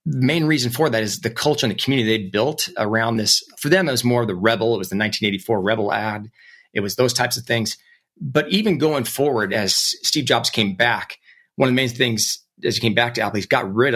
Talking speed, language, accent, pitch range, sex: 250 wpm, English, American, 115-155 Hz, male